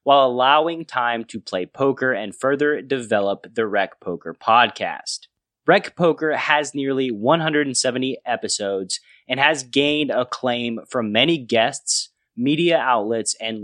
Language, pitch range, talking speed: English, 120-165 Hz, 130 wpm